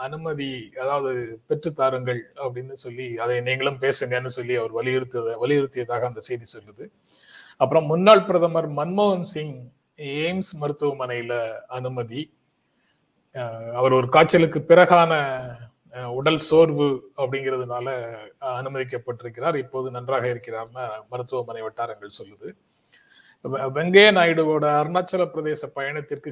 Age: 30-49